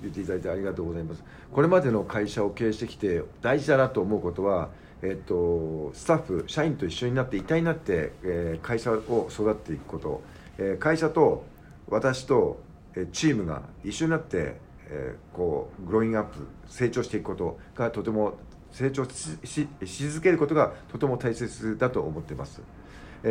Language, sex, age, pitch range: English, male, 50-69, 90-125 Hz